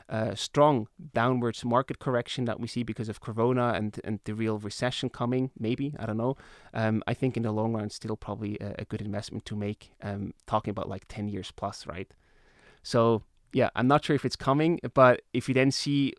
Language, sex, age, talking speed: English, male, 20-39, 210 wpm